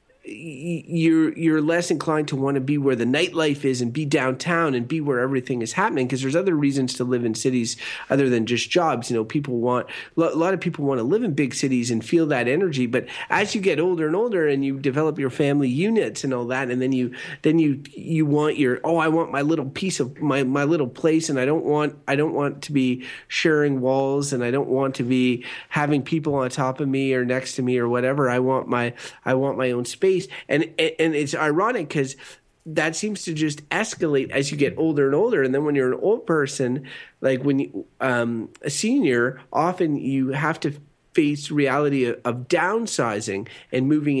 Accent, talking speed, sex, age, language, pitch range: American, 225 wpm, male, 30-49, English, 125-155 Hz